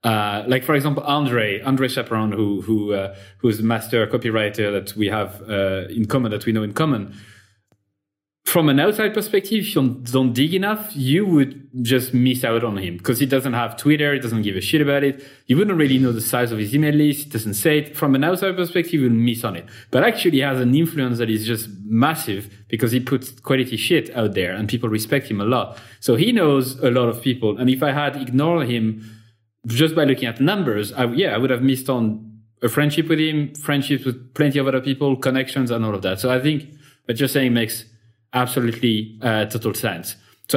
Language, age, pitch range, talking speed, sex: English, 30-49, 110-140 Hz, 220 wpm, male